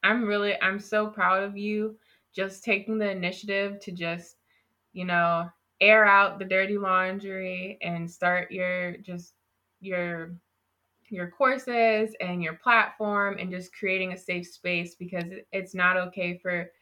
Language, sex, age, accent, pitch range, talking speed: English, female, 20-39, American, 170-190 Hz, 145 wpm